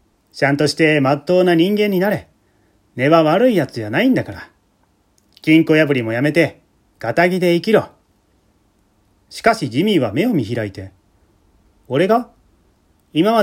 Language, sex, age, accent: Japanese, male, 30-49, native